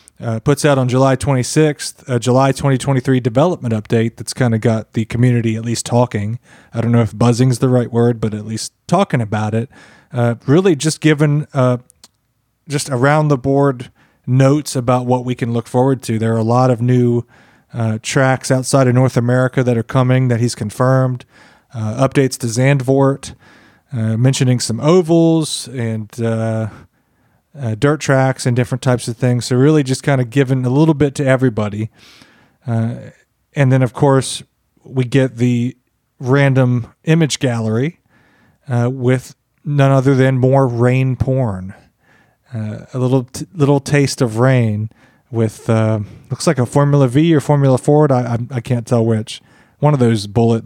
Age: 30-49